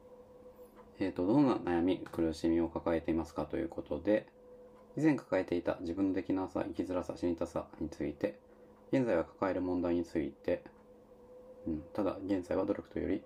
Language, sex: Japanese, male